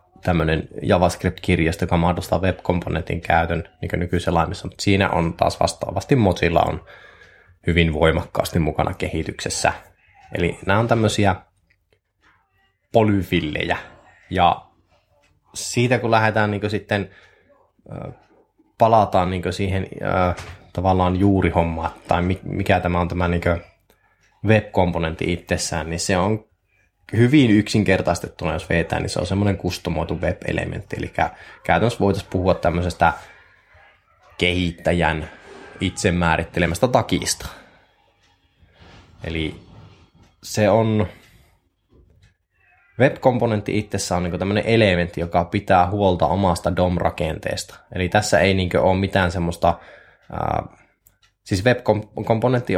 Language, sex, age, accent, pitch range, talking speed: Finnish, male, 20-39, native, 85-100 Hz, 100 wpm